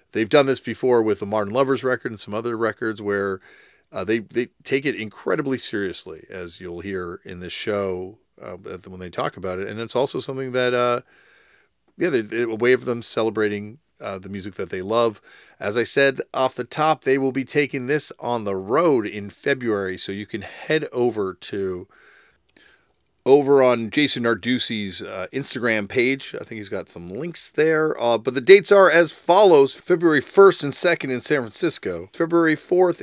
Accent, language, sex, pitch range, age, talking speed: American, English, male, 105-145 Hz, 40-59, 185 wpm